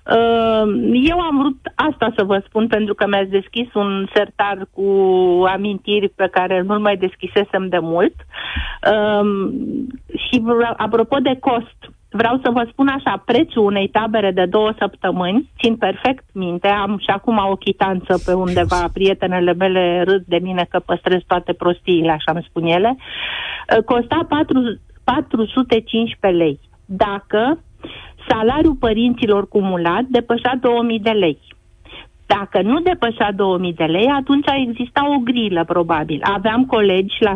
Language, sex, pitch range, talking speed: Romanian, female, 190-250 Hz, 135 wpm